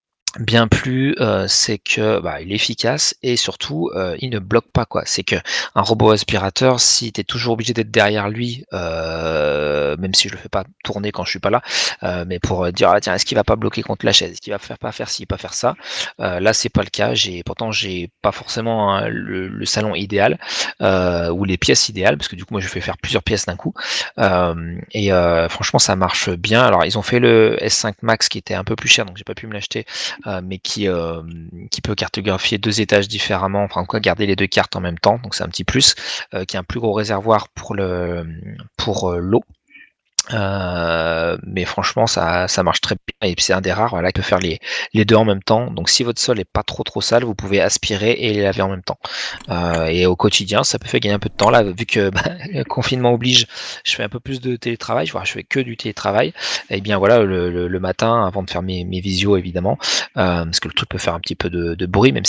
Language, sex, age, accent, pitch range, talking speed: French, male, 30-49, French, 90-115 Hz, 255 wpm